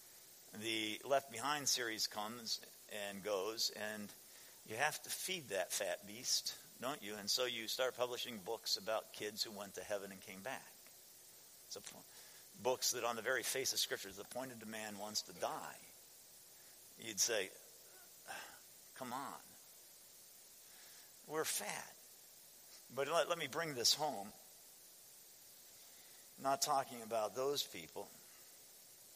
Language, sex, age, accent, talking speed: English, male, 50-69, American, 135 wpm